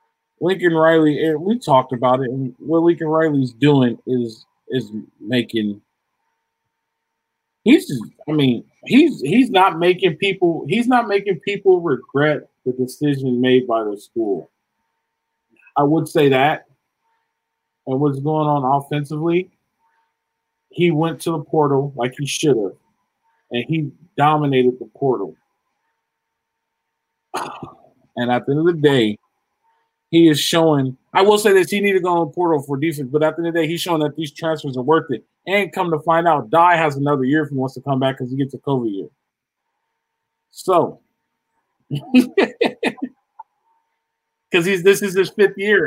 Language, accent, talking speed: English, American, 165 wpm